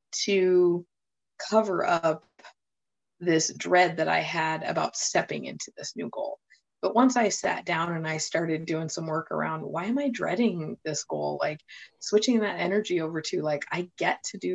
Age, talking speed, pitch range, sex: 20-39, 175 wpm, 160-195 Hz, female